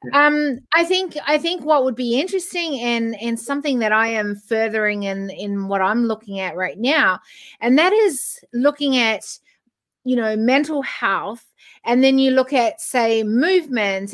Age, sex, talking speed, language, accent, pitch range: 30-49, female, 170 wpm, English, Australian, 220-280 Hz